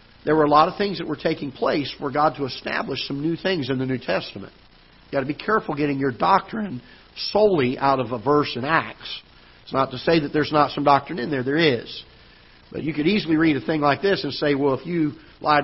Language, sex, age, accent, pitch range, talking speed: English, male, 50-69, American, 130-160 Hz, 245 wpm